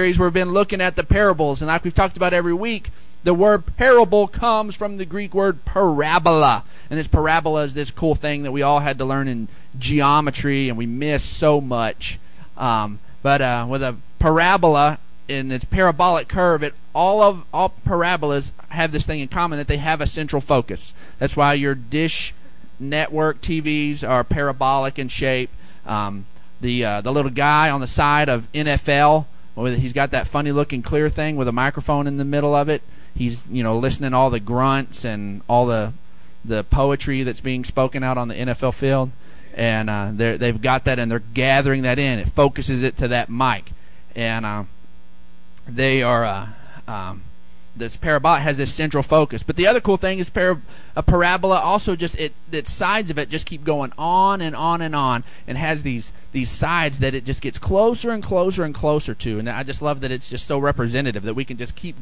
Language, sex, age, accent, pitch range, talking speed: English, male, 30-49, American, 120-155 Hz, 200 wpm